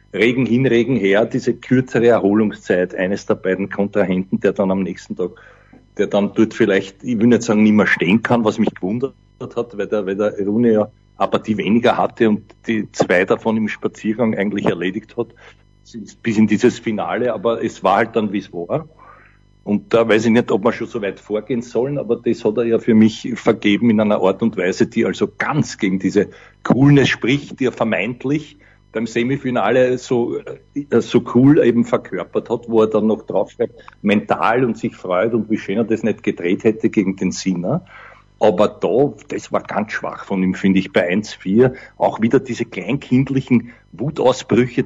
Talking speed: 190 wpm